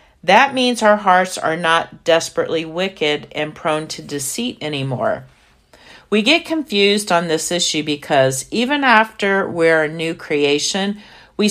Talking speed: 140 wpm